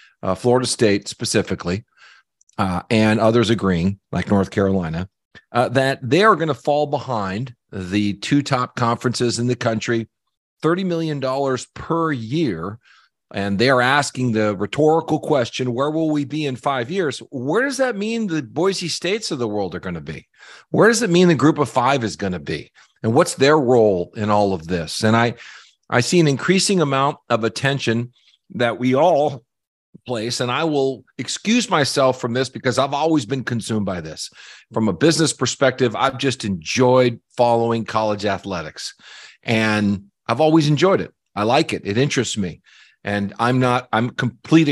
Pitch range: 110-150 Hz